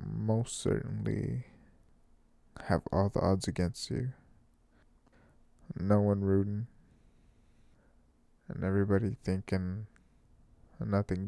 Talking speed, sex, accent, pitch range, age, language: 80 wpm, male, American, 95-110 Hz, 20-39, English